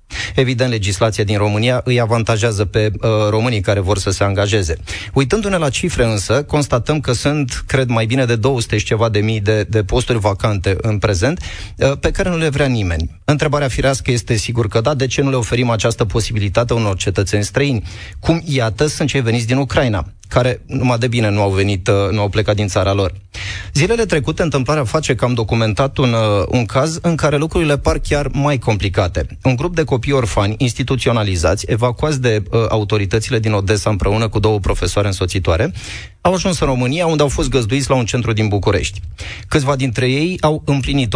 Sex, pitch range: male, 105-135 Hz